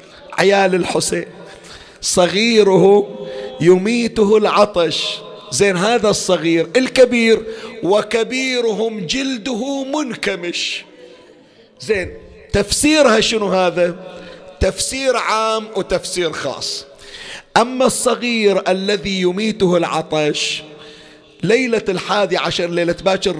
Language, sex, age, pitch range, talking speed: Arabic, male, 40-59, 170-220 Hz, 75 wpm